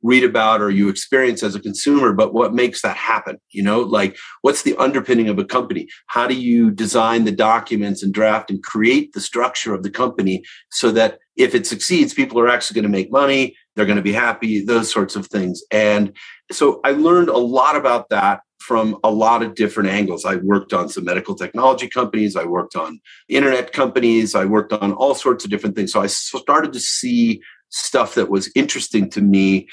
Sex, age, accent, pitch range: male, 40-59, American, 100-120 Hz